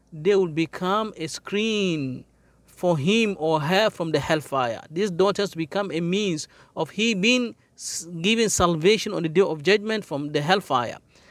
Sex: male